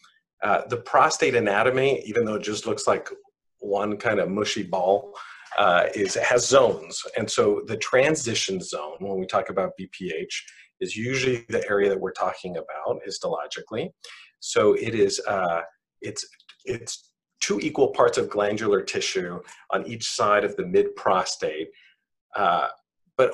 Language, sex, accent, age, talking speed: English, male, American, 40-59, 150 wpm